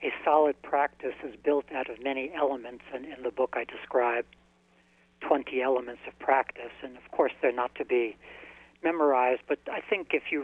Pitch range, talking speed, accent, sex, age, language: 120-150 Hz, 185 wpm, American, male, 60-79, English